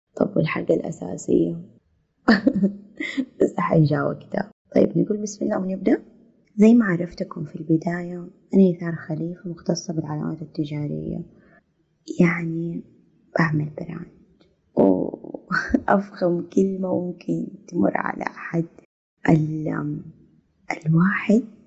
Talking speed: 90 wpm